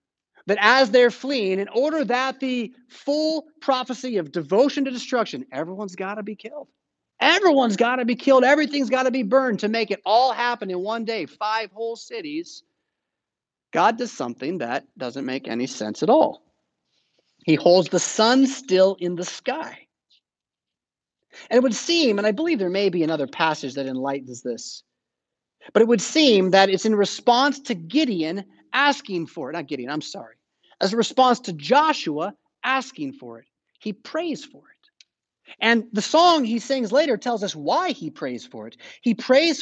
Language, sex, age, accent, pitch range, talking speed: Italian, male, 30-49, American, 175-265 Hz, 175 wpm